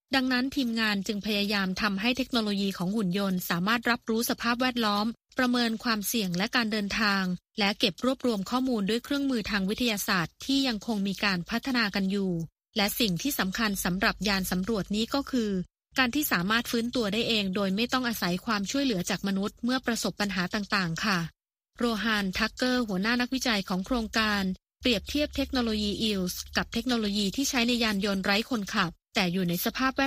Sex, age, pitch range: female, 20-39, 195-245 Hz